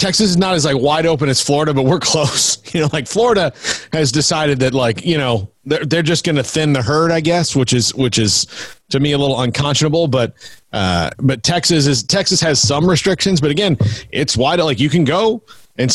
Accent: American